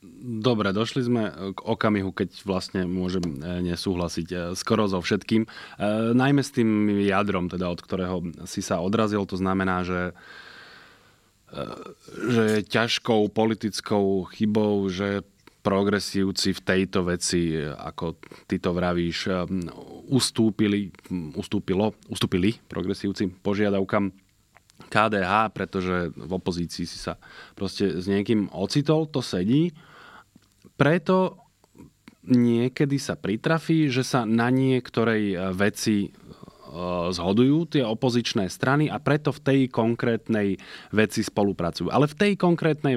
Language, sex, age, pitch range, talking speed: Slovak, male, 30-49, 95-115 Hz, 110 wpm